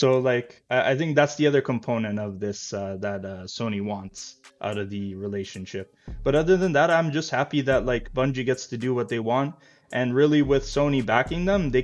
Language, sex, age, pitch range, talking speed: English, male, 20-39, 110-130 Hz, 215 wpm